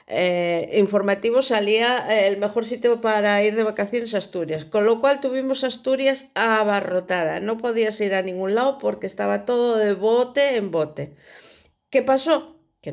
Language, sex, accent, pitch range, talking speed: Spanish, female, Spanish, 160-225 Hz, 160 wpm